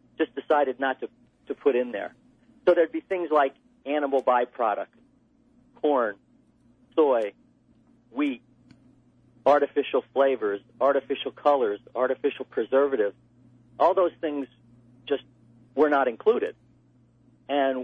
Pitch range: 125-145 Hz